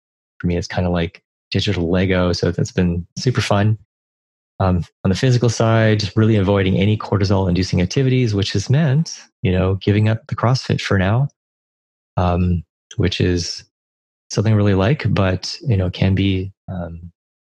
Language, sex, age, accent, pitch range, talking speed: English, male, 30-49, American, 85-110 Hz, 165 wpm